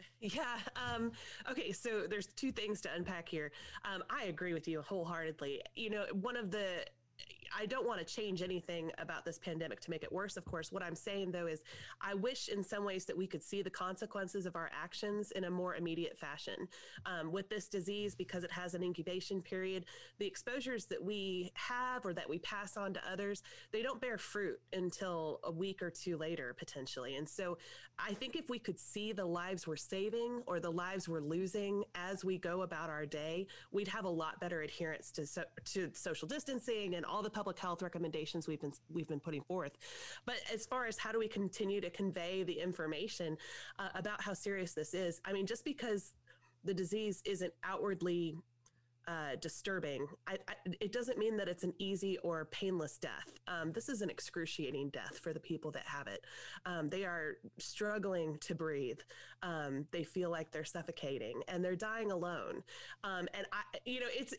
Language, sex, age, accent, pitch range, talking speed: English, female, 30-49, American, 170-205 Hz, 200 wpm